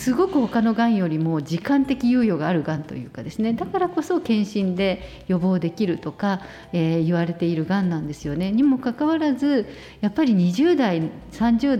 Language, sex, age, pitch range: Japanese, female, 50-69, 170-250 Hz